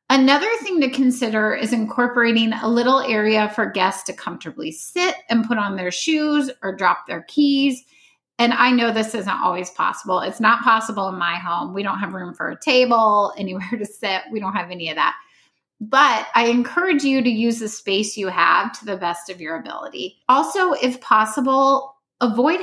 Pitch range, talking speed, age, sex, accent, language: 195-255 Hz, 190 wpm, 30-49, female, American, English